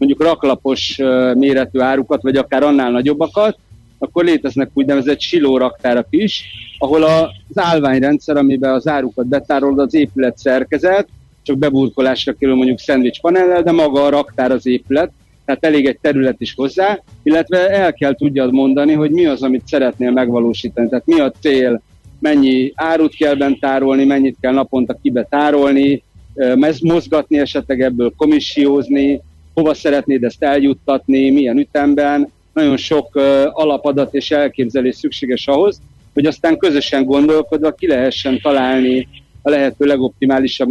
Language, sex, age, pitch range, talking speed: Hungarian, male, 60-79, 130-150 Hz, 135 wpm